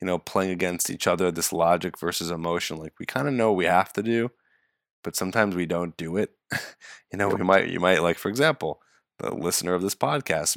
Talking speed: 225 wpm